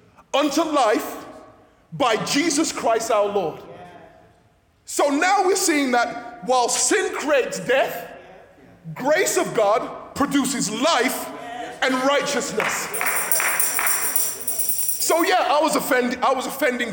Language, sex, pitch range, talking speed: English, male, 245-330 Hz, 105 wpm